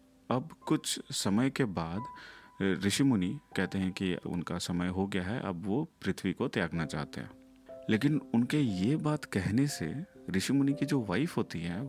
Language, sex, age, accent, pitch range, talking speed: Hindi, male, 40-59, native, 90-125 Hz, 175 wpm